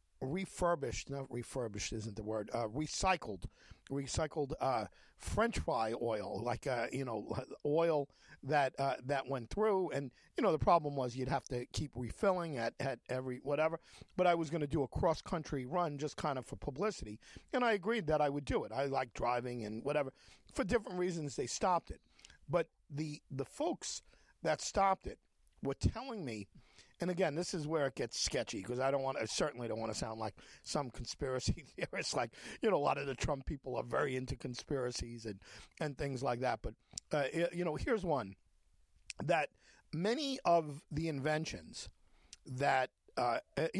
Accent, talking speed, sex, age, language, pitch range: American, 185 wpm, male, 50-69, English, 125-165 Hz